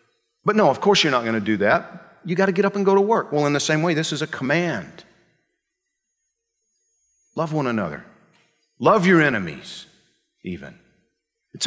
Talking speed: 185 wpm